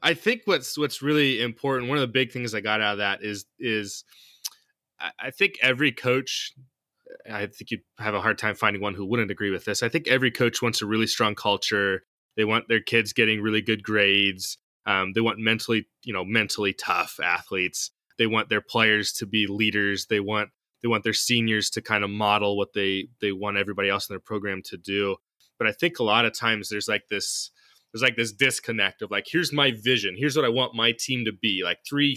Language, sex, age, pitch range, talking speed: English, male, 20-39, 105-130 Hz, 225 wpm